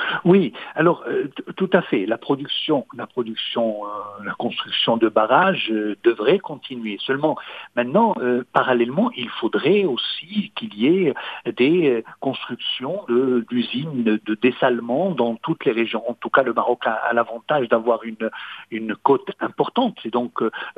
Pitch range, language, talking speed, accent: 120-155 Hz, English, 155 wpm, French